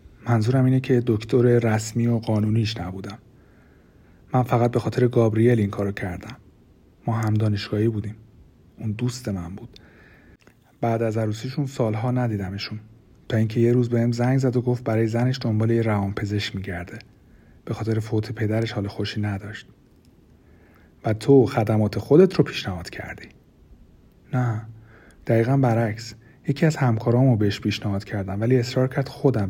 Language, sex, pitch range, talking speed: Persian, male, 105-125 Hz, 140 wpm